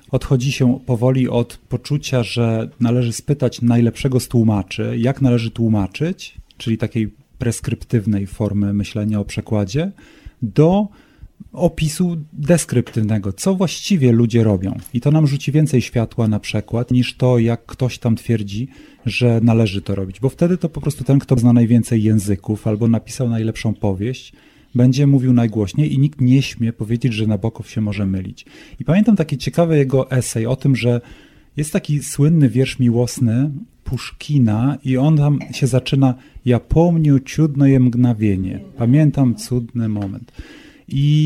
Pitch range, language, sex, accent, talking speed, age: 115-140 Hz, Polish, male, native, 150 wpm, 30-49